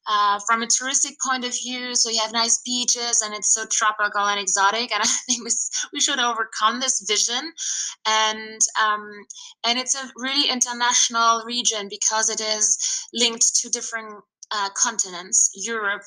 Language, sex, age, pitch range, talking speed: English, female, 20-39, 195-230 Hz, 160 wpm